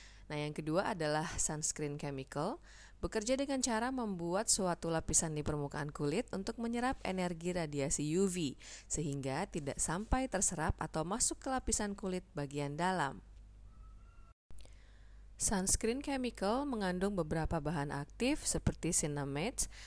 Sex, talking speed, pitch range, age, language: female, 120 wpm, 145-195 Hz, 30-49, Indonesian